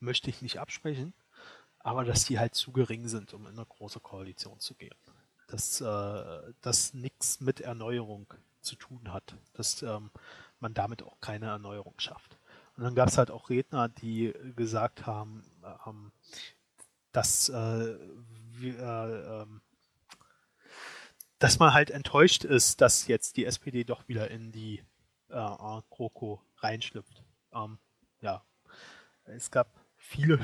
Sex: male